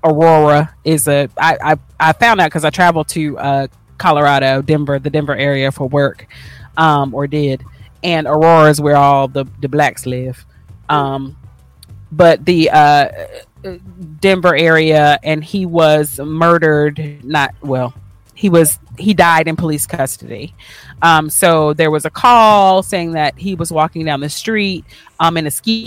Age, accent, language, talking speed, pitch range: 30-49, American, English, 160 wpm, 145-180 Hz